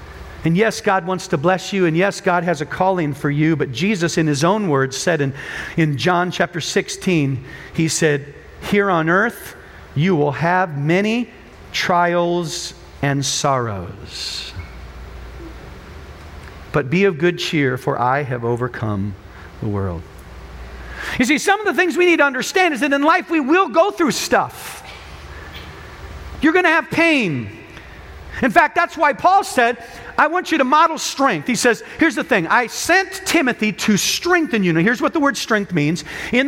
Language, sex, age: English, male, 40-59